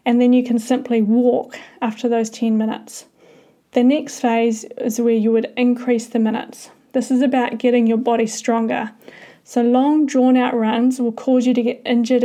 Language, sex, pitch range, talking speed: English, female, 230-255 Hz, 185 wpm